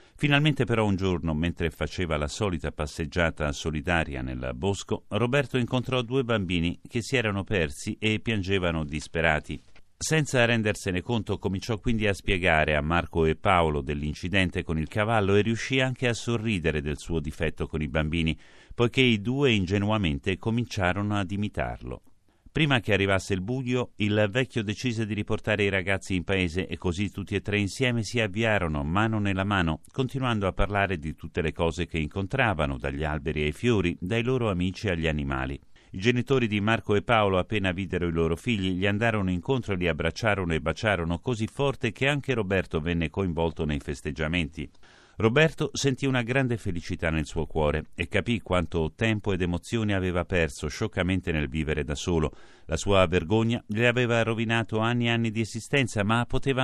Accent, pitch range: native, 85-115 Hz